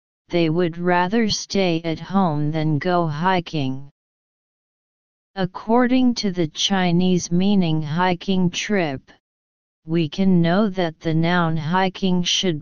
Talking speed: 115 wpm